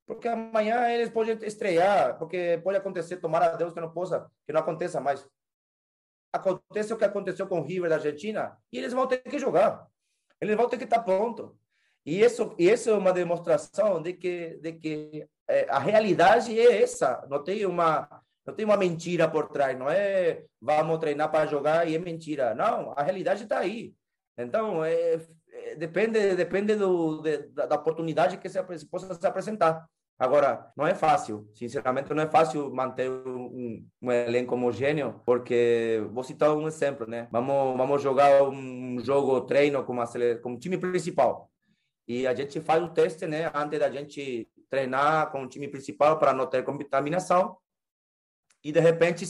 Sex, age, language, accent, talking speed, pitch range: male, 30-49, Portuguese, Brazilian, 180 wpm, 135-190 Hz